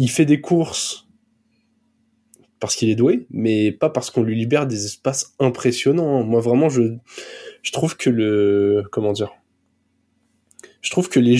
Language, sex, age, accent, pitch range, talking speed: French, male, 20-39, French, 115-155 Hz, 160 wpm